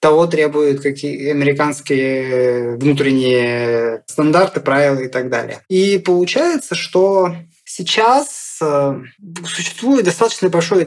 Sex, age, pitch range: male, 20-39, 145-185 Hz